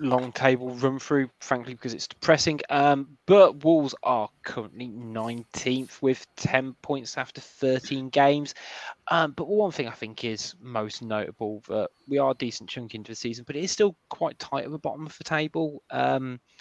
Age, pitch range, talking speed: 20-39, 110-150 Hz, 185 wpm